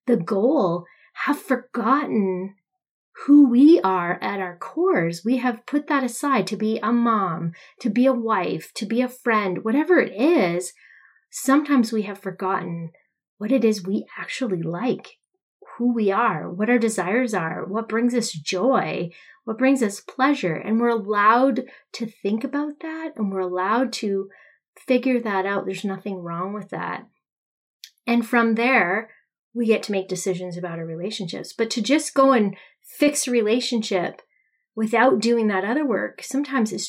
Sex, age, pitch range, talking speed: female, 30-49, 190-255 Hz, 165 wpm